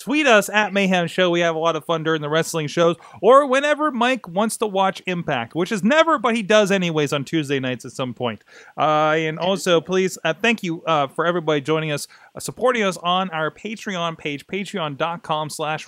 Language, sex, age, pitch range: English, male, 30-49, 145-195 Hz